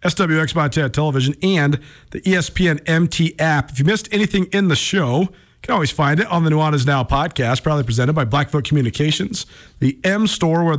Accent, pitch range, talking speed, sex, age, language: American, 130-175 Hz, 195 wpm, male, 40-59, English